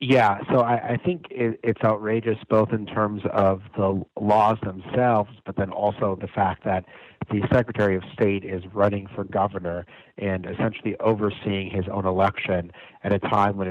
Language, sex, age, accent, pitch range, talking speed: English, male, 40-59, American, 95-115 Hz, 165 wpm